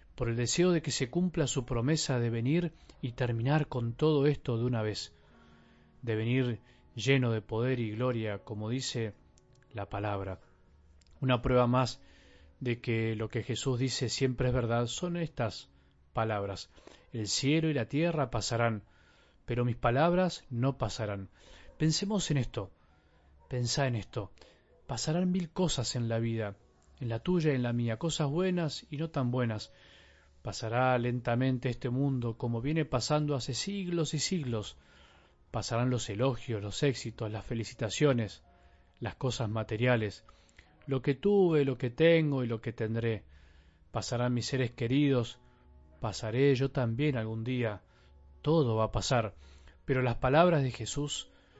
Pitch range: 110-140 Hz